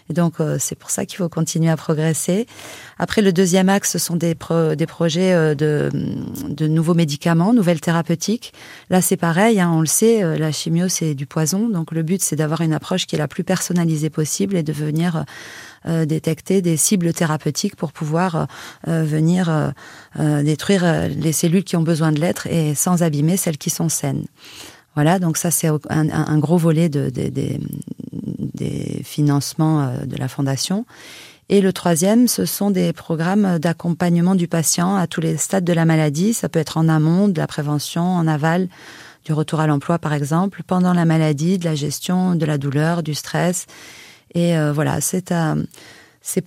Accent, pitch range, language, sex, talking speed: French, 155-180 Hz, French, female, 190 wpm